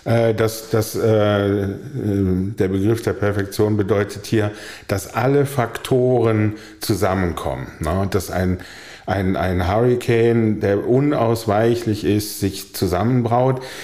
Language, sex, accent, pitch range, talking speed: German, male, German, 100-125 Hz, 105 wpm